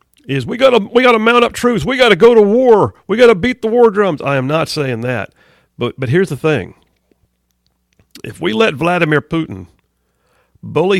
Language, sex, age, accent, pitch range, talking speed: English, male, 50-69, American, 110-155 Hz, 205 wpm